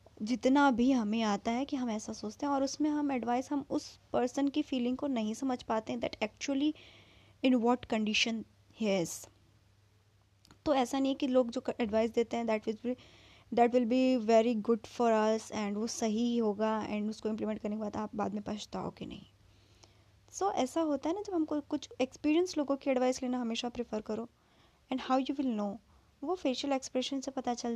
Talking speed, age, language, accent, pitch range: 200 wpm, 20-39, Hindi, native, 220-270 Hz